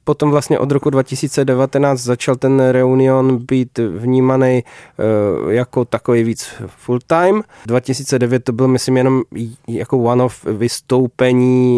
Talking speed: 115 wpm